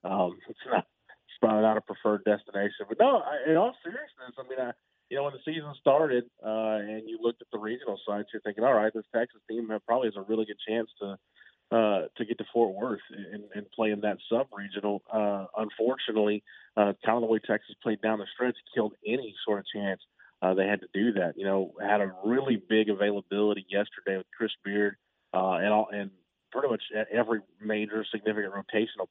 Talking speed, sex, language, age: 210 wpm, male, English, 30-49